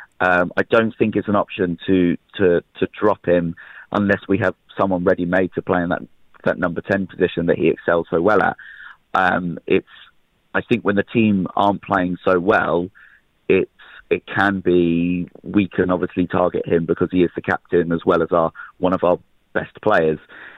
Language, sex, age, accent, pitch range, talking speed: English, male, 30-49, British, 85-100 Hz, 190 wpm